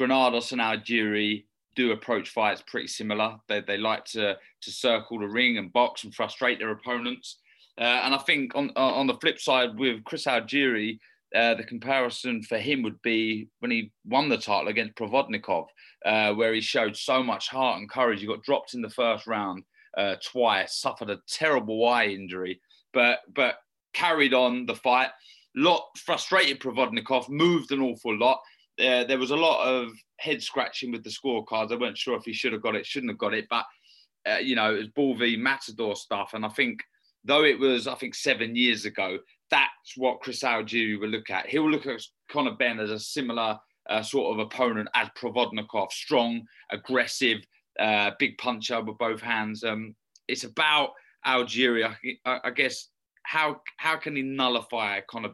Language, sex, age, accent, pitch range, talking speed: English, male, 30-49, British, 110-130 Hz, 185 wpm